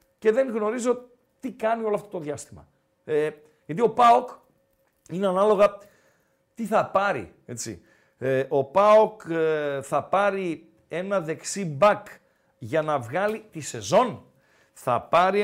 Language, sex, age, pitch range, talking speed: Greek, male, 50-69, 160-210 Hz, 135 wpm